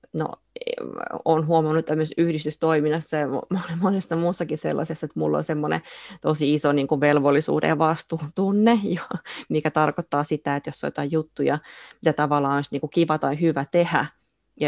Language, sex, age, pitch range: Finnish, female, 20-39, 145-165 Hz